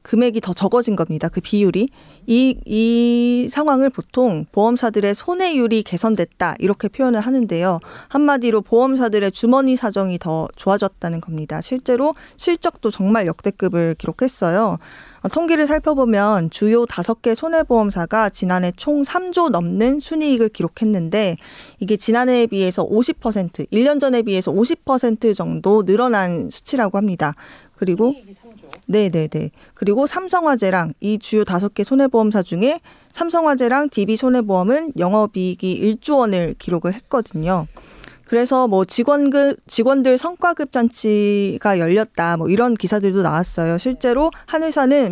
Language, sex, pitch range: Korean, female, 185-255 Hz